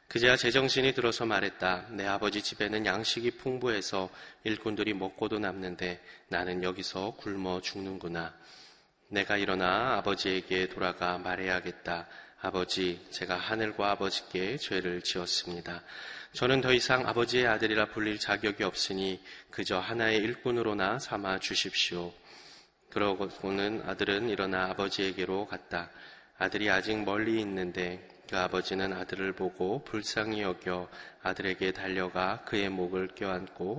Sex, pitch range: male, 95-110 Hz